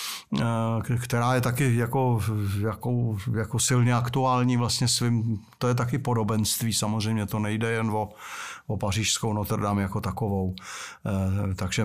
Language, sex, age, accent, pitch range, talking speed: Czech, male, 60-79, native, 115-130 Hz, 130 wpm